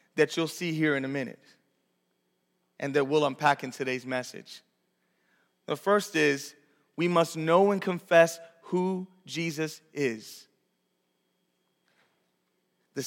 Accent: American